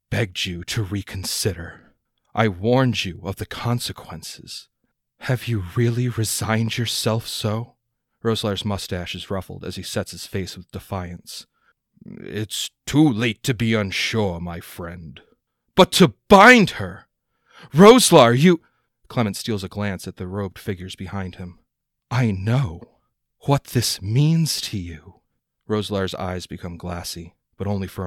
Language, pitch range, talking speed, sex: English, 95-120 Hz, 140 wpm, male